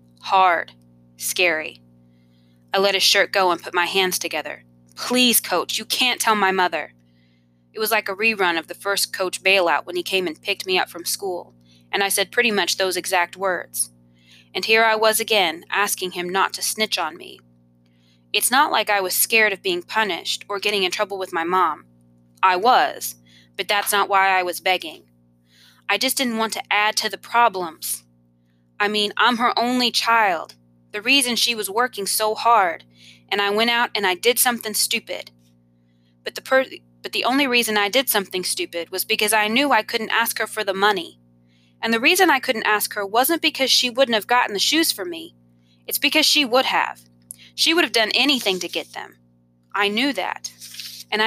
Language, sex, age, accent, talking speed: English, female, 20-39, American, 200 wpm